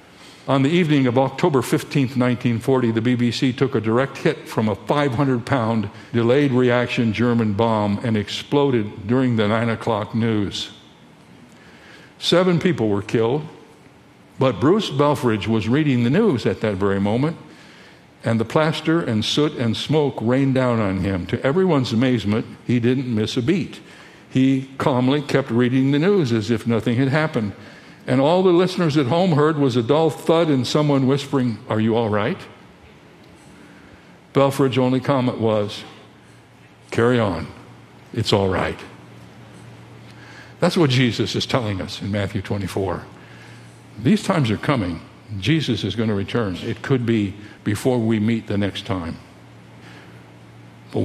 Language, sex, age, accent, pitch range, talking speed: English, male, 60-79, American, 105-135 Hz, 150 wpm